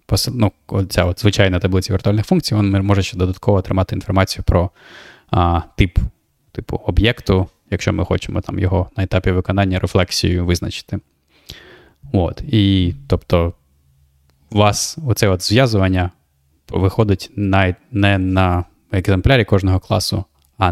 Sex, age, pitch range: male, 20-39, 90-110 Hz